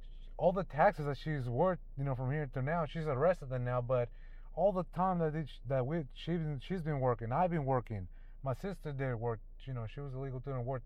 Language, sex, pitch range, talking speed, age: English, male, 115-145 Hz, 240 wpm, 30-49